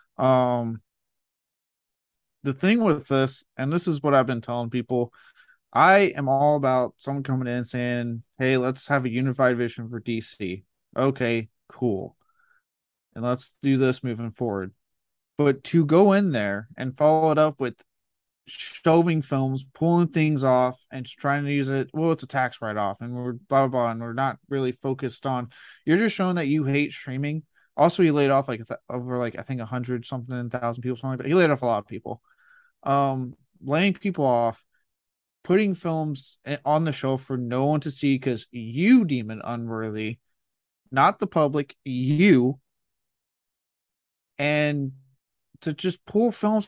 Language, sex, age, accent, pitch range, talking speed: English, male, 30-49, American, 125-160 Hz, 170 wpm